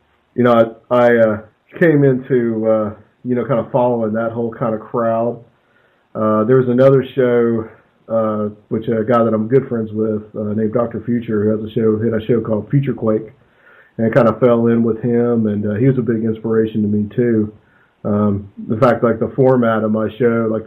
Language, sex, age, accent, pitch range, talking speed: English, male, 40-59, American, 110-120 Hz, 210 wpm